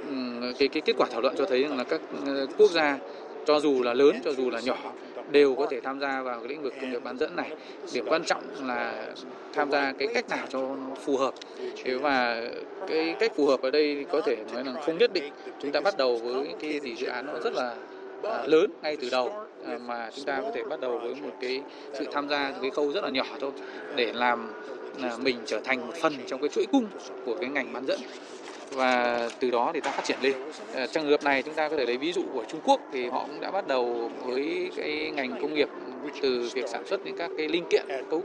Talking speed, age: 240 wpm, 20-39